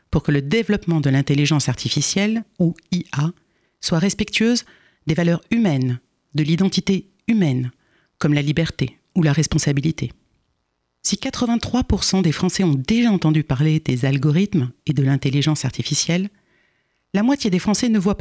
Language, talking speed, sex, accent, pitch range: French, 140 wpm, female, French, 145-195 Hz